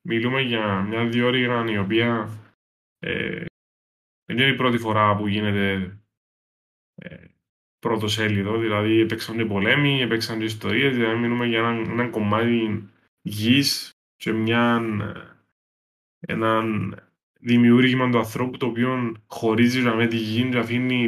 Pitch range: 105-120 Hz